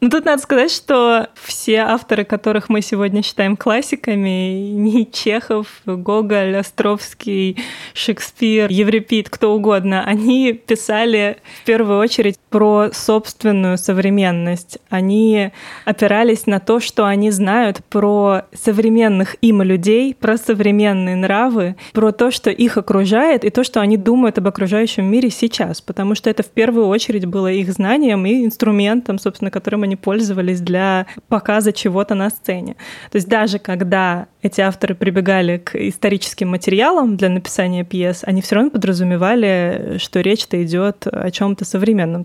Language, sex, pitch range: Russian, female, 190-225 Hz